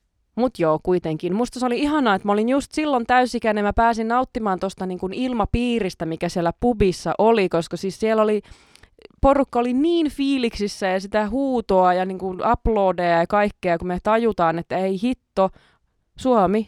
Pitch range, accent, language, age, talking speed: 165-215 Hz, native, Finnish, 20-39, 145 wpm